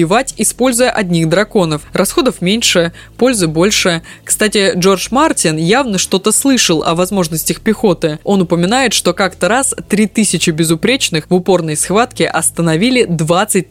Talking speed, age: 125 wpm, 20-39